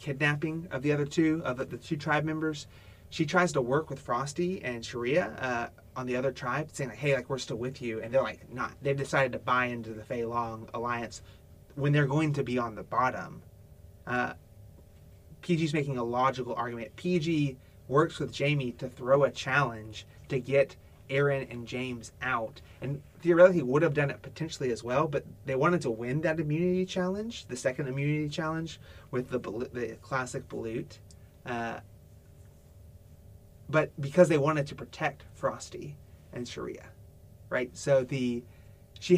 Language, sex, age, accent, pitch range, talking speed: English, male, 30-49, American, 115-150 Hz, 170 wpm